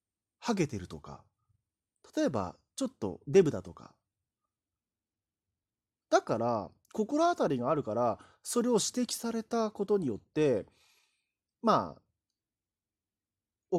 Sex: male